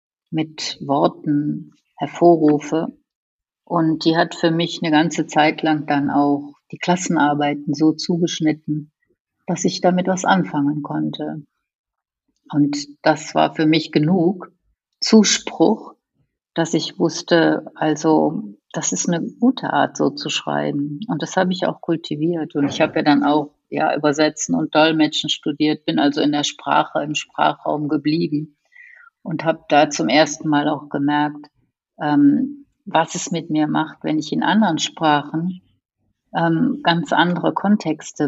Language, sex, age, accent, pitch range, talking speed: German, female, 50-69, German, 150-170 Hz, 145 wpm